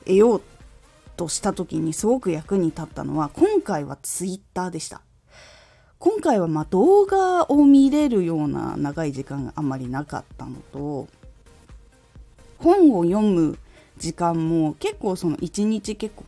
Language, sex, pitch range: Japanese, female, 160-255 Hz